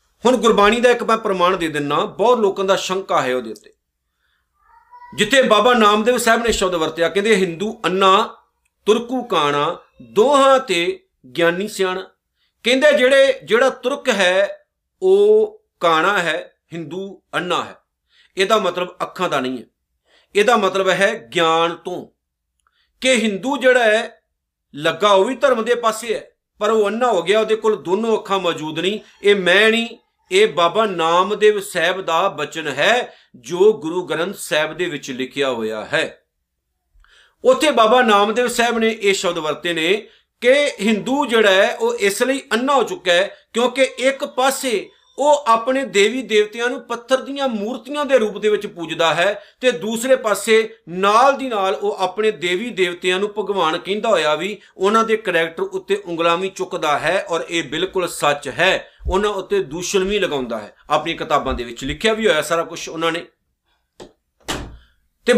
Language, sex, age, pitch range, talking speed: Punjabi, male, 50-69, 175-250 Hz, 155 wpm